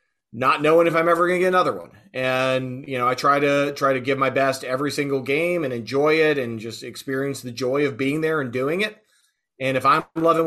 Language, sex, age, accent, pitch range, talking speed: English, male, 30-49, American, 130-155 Hz, 240 wpm